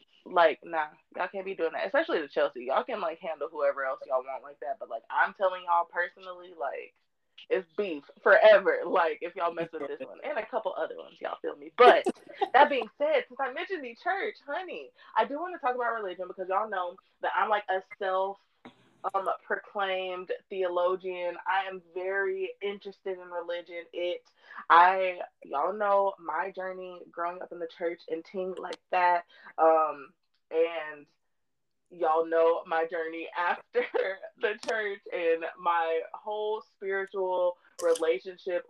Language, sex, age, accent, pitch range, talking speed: English, female, 20-39, American, 170-265 Hz, 165 wpm